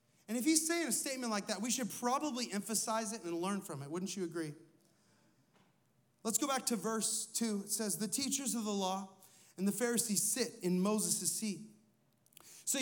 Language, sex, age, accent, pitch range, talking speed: English, male, 30-49, American, 180-240 Hz, 190 wpm